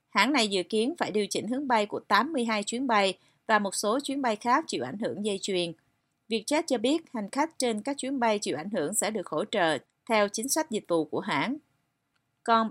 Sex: female